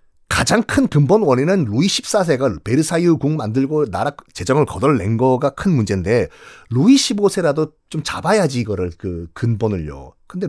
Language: Korean